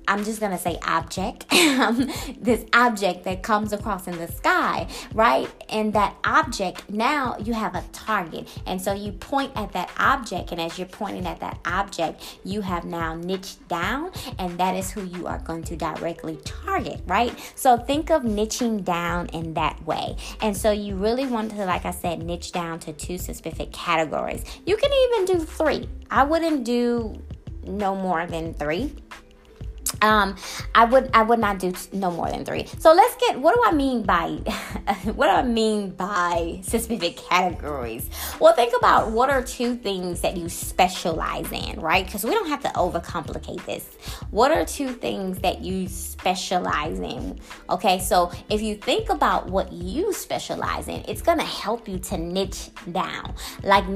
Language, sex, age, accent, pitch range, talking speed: English, female, 20-39, American, 180-245 Hz, 180 wpm